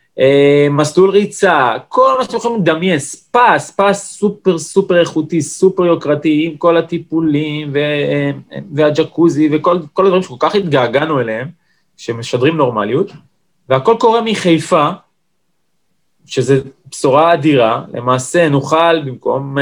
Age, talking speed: 20-39, 115 wpm